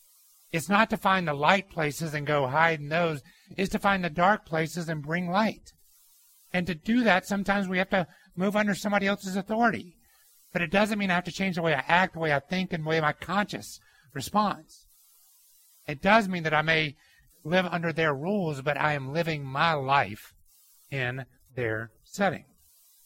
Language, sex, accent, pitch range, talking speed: English, male, American, 135-185 Hz, 195 wpm